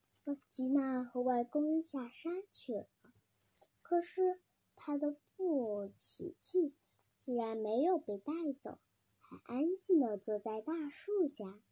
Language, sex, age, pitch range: Chinese, male, 10-29, 210-345 Hz